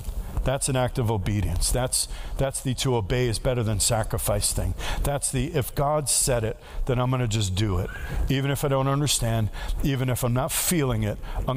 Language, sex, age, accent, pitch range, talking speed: English, male, 50-69, American, 120-175 Hz, 200 wpm